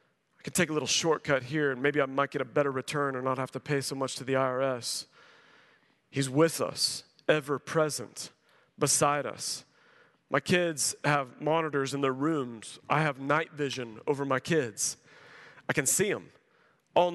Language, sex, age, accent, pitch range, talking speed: English, male, 40-59, American, 140-170 Hz, 180 wpm